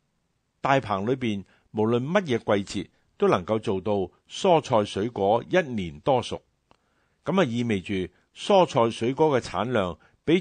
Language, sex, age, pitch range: Chinese, male, 50-69, 100-150 Hz